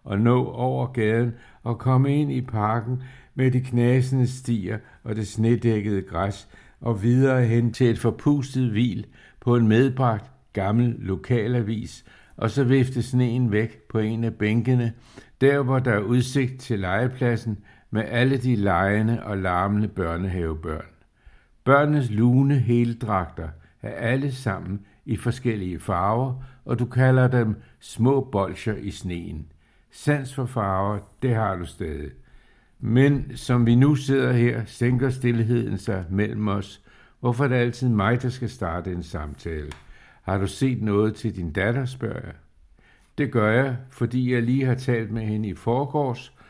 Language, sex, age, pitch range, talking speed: Danish, male, 60-79, 100-125 Hz, 150 wpm